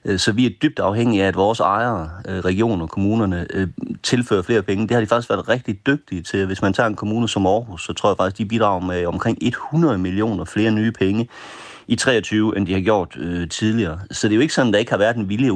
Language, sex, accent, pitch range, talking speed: Danish, male, native, 95-115 Hz, 250 wpm